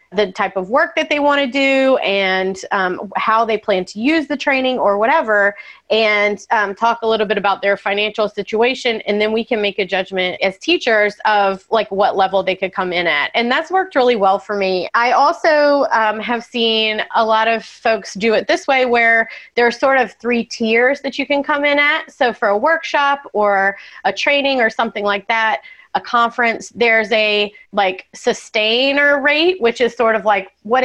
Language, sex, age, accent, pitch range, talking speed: English, female, 30-49, American, 205-270 Hz, 205 wpm